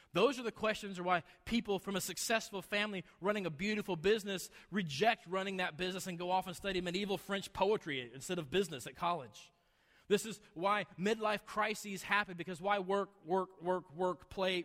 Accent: American